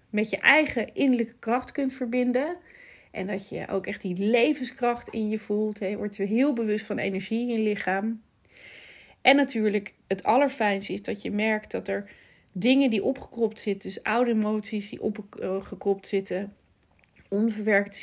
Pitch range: 205-240 Hz